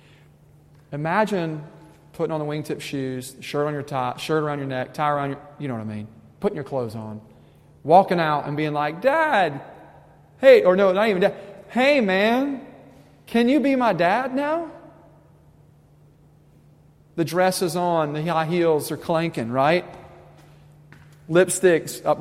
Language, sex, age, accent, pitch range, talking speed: English, male, 40-59, American, 140-175 Hz, 155 wpm